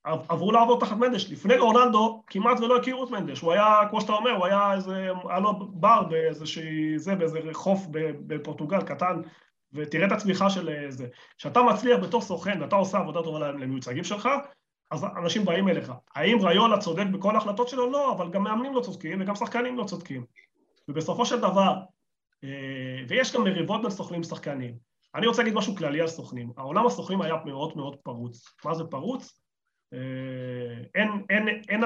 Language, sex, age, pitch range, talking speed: Hebrew, male, 30-49, 150-205 Hz, 145 wpm